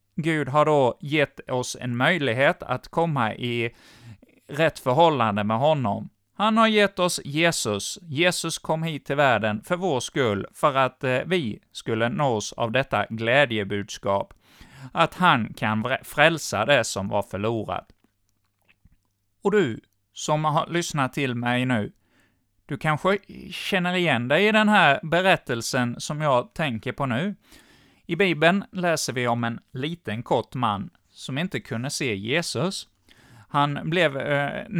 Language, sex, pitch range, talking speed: Swedish, male, 120-170 Hz, 140 wpm